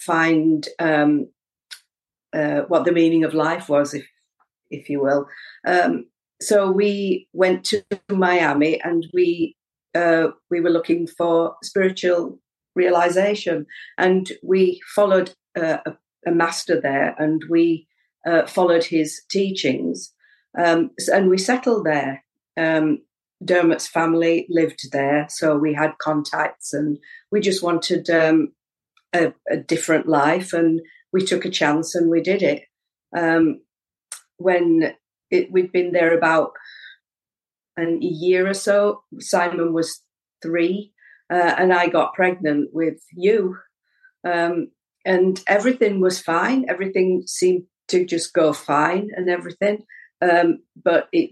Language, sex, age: English, female, 50-69